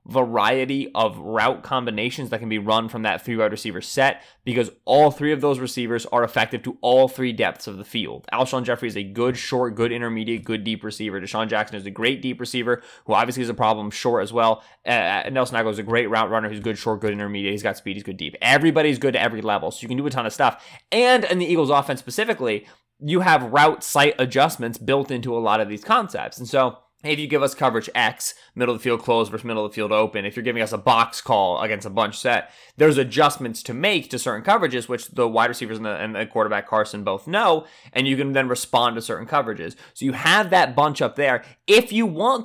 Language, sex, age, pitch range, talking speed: English, male, 20-39, 115-145 Hz, 240 wpm